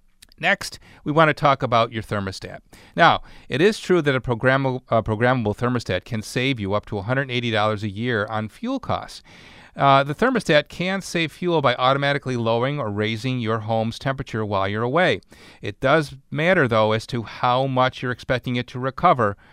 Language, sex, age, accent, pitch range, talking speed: English, male, 40-59, American, 115-155 Hz, 180 wpm